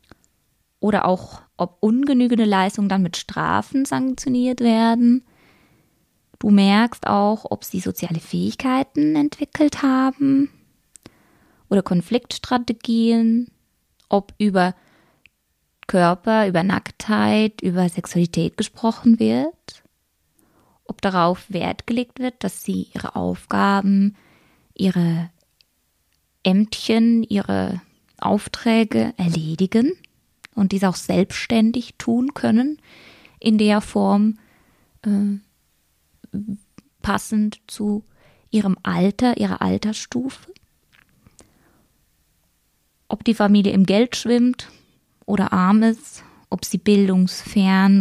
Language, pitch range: German, 190-230 Hz